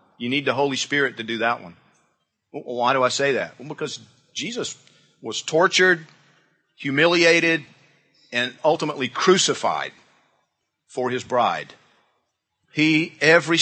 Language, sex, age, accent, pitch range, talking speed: English, male, 50-69, American, 120-155 Hz, 130 wpm